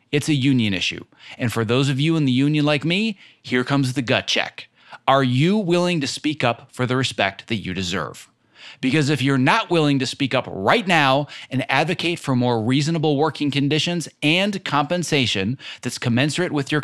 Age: 30-49